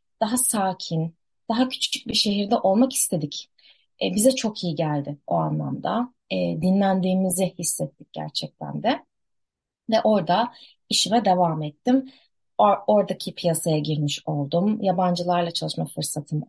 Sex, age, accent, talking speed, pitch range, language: female, 30-49, native, 110 wpm, 170-255 Hz, Turkish